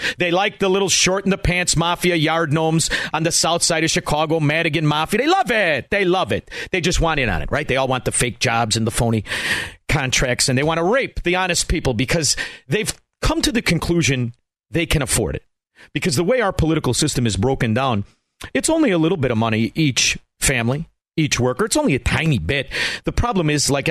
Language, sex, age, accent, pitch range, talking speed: English, male, 40-59, American, 120-170 Hz, 225 wpm